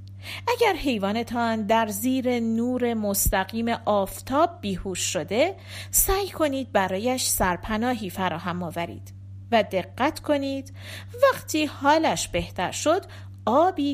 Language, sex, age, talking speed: Persian, female, 40-59, 100 wpm